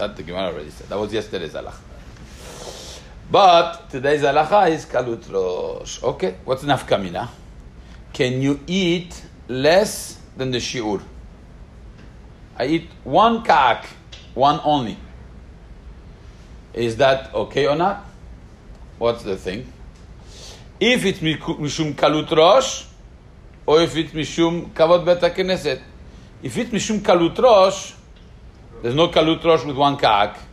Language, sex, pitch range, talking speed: English, male, 115-175 Hz, 115 wpm